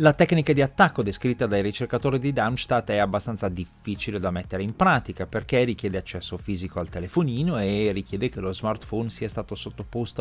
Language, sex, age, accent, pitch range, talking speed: Italian, male, 30-49, native, 95-130 Hz, 175 wpm